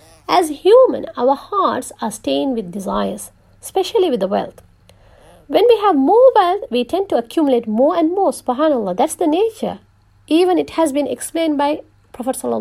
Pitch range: 225-310 Hz